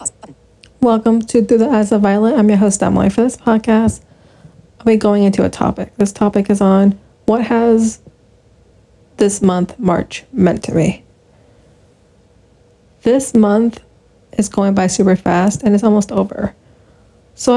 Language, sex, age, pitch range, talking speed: English, female, 20-39, 185-220 Hz, 150 wpm